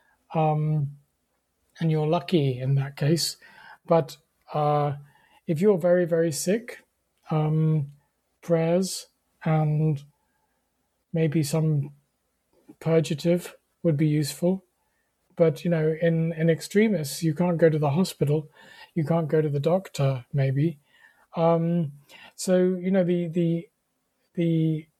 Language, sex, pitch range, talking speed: English, male, 140-170 Hz, 120 wpm